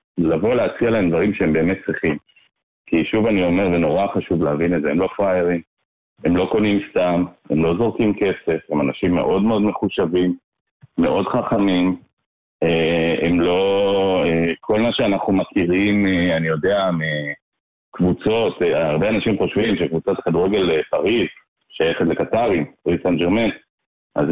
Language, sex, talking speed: Hebrew, male, 155 wpm